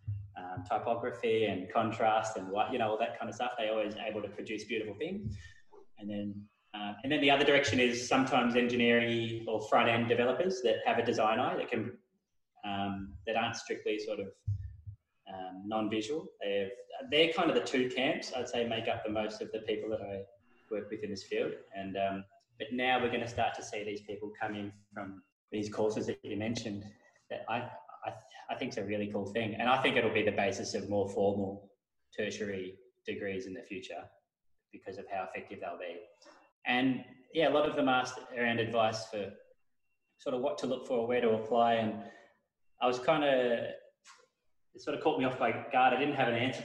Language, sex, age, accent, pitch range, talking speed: English, male, 20-39, Australian, 105-125 Hz, 210 wpm